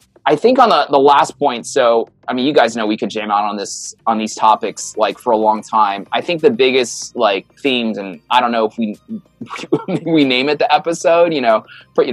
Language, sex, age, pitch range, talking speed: English, male, 20-39, 110-145 Hz, 235 wpm